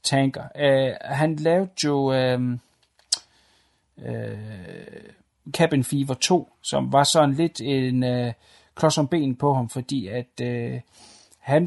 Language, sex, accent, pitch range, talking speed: Danish, male, native, 125-145 Hz, 125 wpm